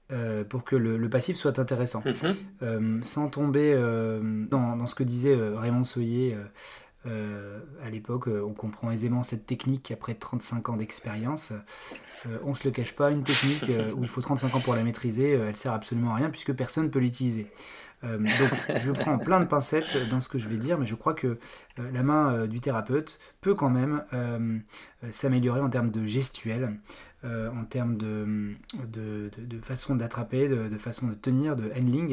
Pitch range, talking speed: 115-135 Hz, 195 wpm